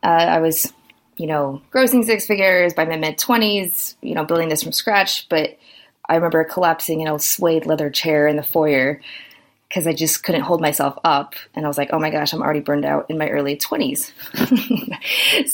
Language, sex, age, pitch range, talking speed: English, female, 20-39, 155-210 Hz, 195 wpm